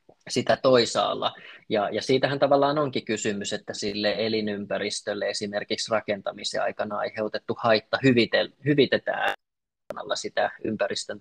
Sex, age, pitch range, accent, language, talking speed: male, 20-39, 105-120 Hz, native, Finnish, 100 wpm